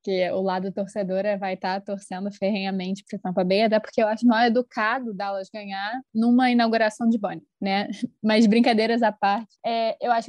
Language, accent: Portuguese, Brazilian